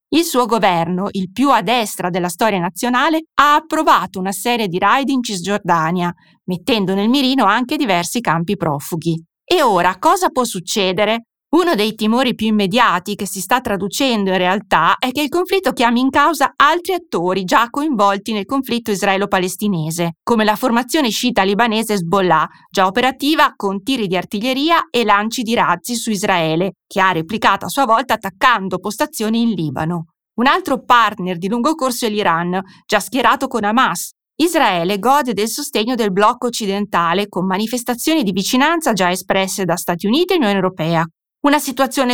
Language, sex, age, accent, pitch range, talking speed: Italian, female, 30-49, native, 185-255 Hz, 165 wpm